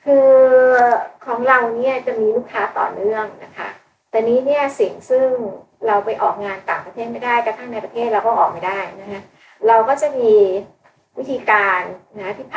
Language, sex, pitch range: Thai, female, 200-255 Hz